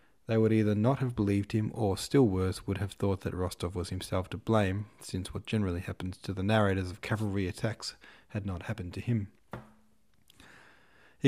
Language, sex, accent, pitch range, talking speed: English, male, Australian, 95-110 Hz, 185 wpm